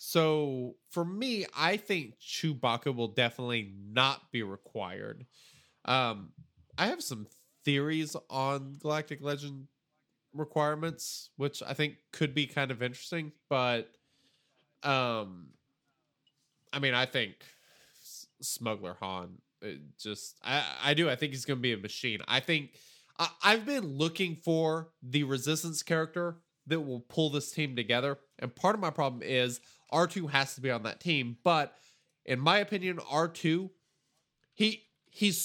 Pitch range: 130-165 Hz